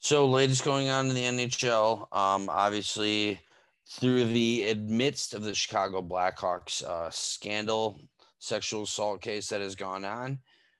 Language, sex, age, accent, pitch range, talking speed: English, male, 20-39, American, 100-125 Hz, 140 wpm